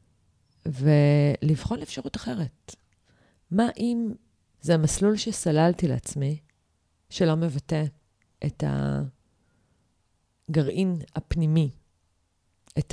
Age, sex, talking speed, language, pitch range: 30-49, female, 70 wpm, Hebrew, 140-180 Hz